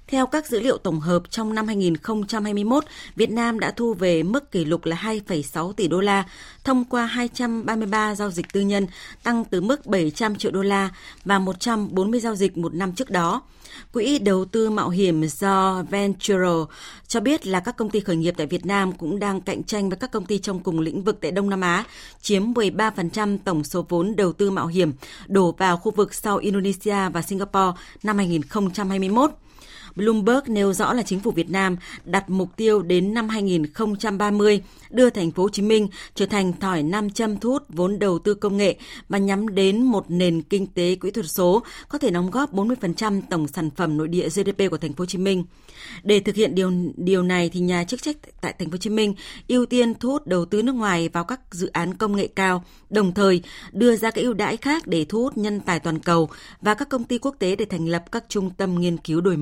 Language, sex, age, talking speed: Vietnamese, female, 20-39, 220 wpm